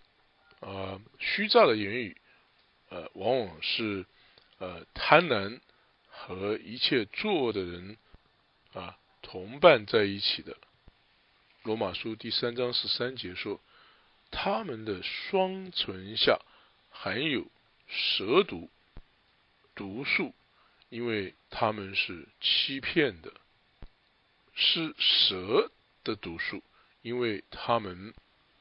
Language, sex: English, male